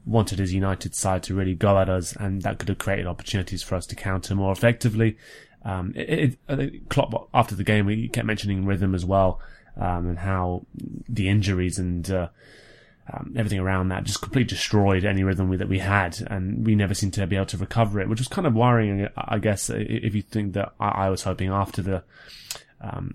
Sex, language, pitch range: male, English, 95-110 Hz